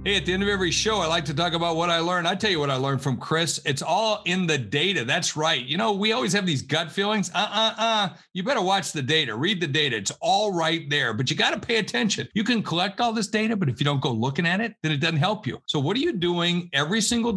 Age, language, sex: 50-69, English, male